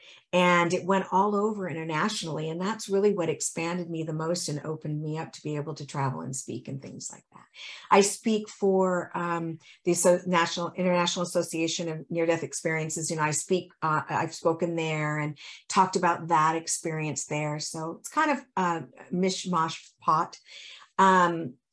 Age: 50-69